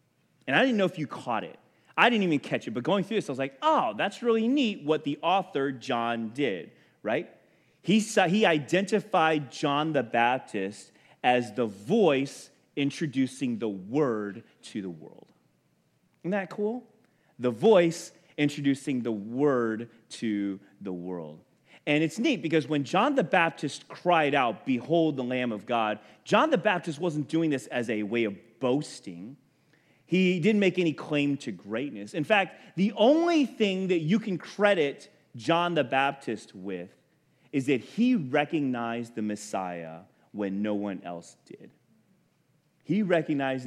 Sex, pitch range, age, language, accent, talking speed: male, 105-170 Hz, 30-49, English, American, 160 wpm